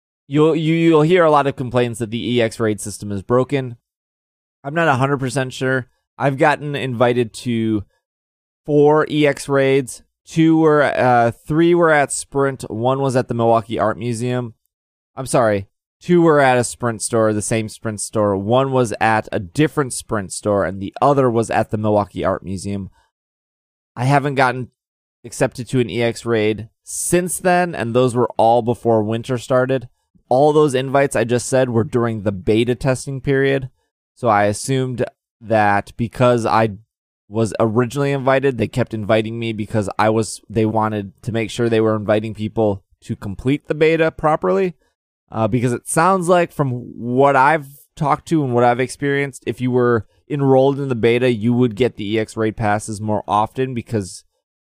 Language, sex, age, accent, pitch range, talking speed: English, male, 20-39, American, 105-135 Hz, 175 wpm